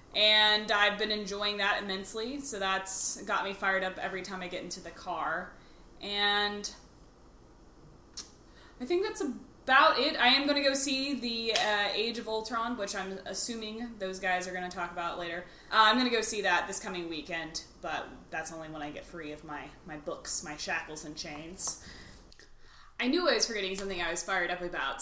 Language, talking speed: English, 200 wpm